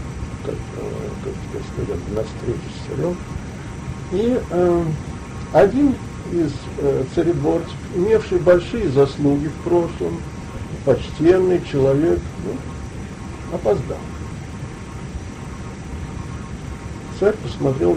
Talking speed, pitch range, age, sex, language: 70 wpm, 110-170 Hz, 50-69, male, Russian